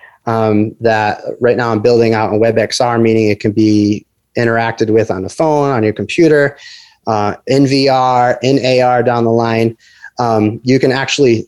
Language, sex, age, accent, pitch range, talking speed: English, male, 30-49, American, 110-130 Hz, 175 wpm